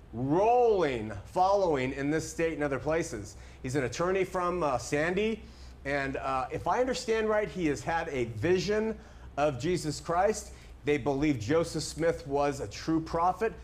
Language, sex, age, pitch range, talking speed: German, male, 40-59, 150-205 Hz, 160 wpm